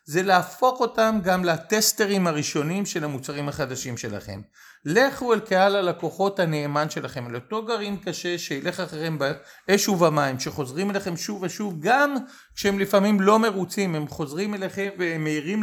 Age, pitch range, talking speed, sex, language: 40-59, 155-210 Hz, 140 wpm, male, Hebrew